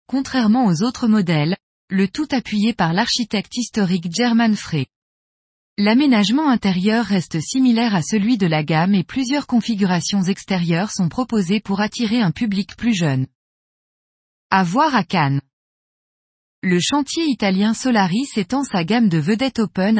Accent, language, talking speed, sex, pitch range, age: French, French, 140 wpm, female, 180-245 Hz, 20-39